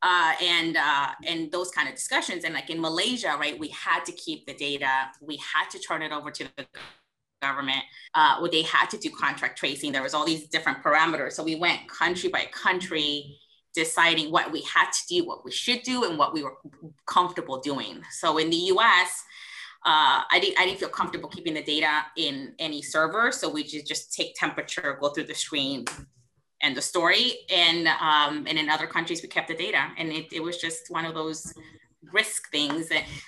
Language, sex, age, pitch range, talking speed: English, female, 20-39, 155-205 Hz, 205 wpm